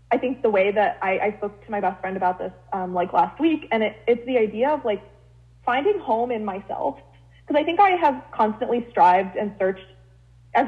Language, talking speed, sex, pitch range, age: English, 220 wpm, female, 190-240 Hz, 20-39